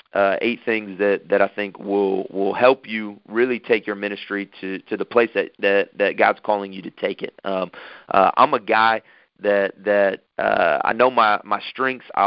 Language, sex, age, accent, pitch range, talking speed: English, male, 30-49, American, 95-110 Hz, 215 wpm